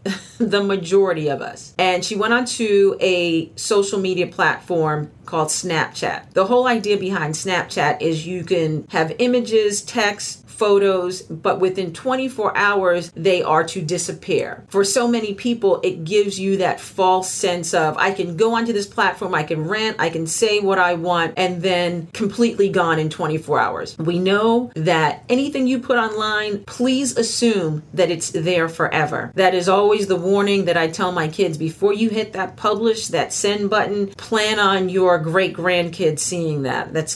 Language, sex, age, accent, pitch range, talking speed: English, female, 40-59, American, 175-210 Hz, 170 wpm